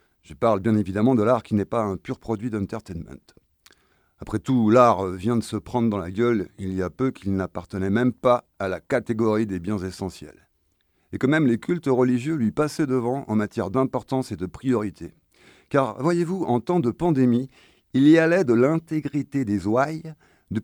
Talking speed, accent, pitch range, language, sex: 190 wpm, French, 105-145 Hz, French, male